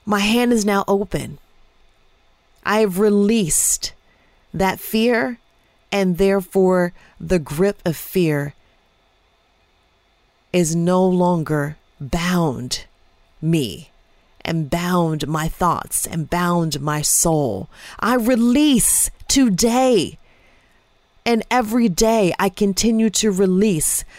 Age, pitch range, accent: 30-49, 175-235 Hz, American